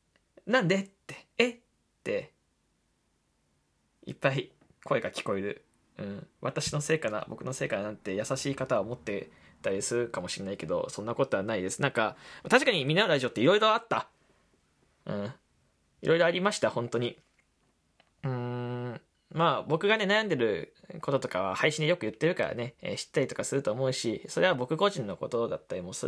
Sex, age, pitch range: male, 20-39, 120-175 Hz